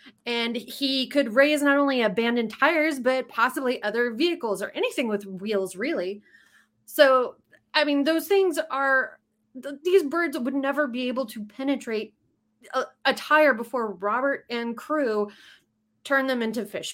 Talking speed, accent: 145 wpm, American